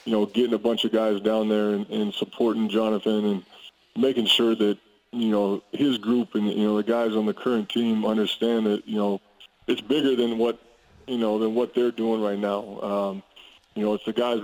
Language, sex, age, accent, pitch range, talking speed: English, male, 20-39, American, 110-125 Hz, 215 wpm